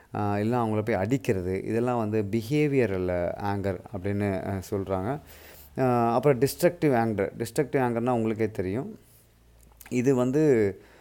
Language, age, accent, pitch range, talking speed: Tamil, 30-49, native, 100-120 Hz, 105 wpm